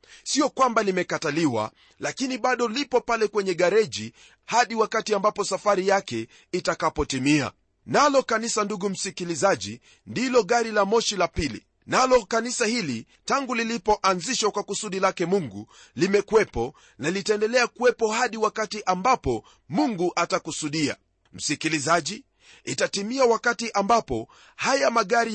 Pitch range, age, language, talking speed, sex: 175-235 Hz, 40-59, Swahili, 115 wpm, male